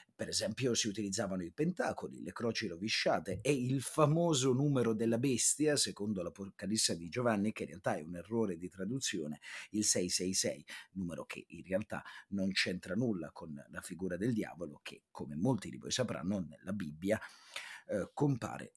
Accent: native